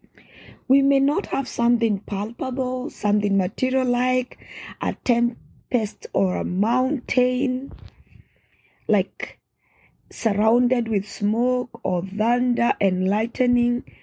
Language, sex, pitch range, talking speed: English, female, 200-245 Hz, 95 wpm